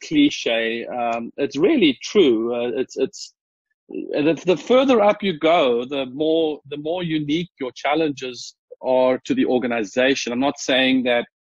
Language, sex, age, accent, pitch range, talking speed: English, male, 40-59, South African, 120-170 Hz, 150 wpm